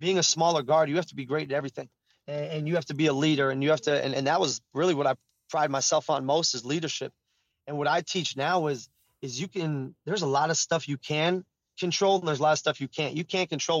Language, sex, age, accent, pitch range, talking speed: English, male, 20-39, American, 145-175 Hz, 275 wpm